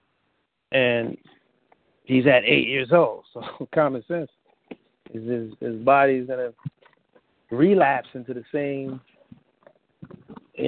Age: 40-59